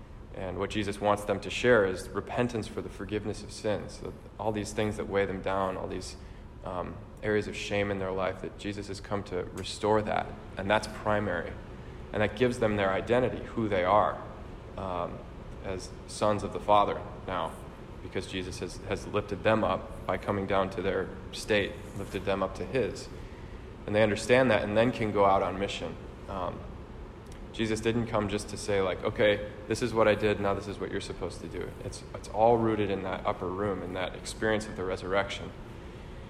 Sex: male